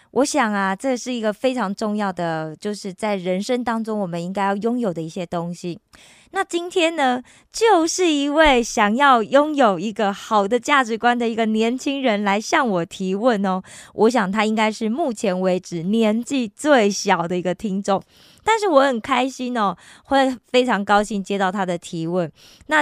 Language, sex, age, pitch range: Korean, female, 20-39, 195-255 Hz